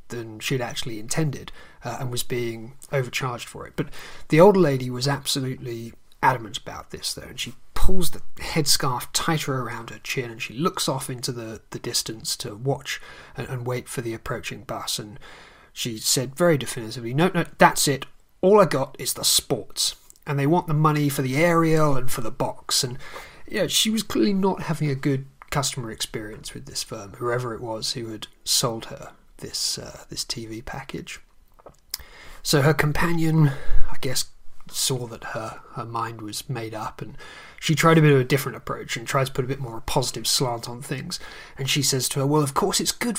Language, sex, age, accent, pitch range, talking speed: English, male, 30-49, British, 120-160 Hz, 200 wpm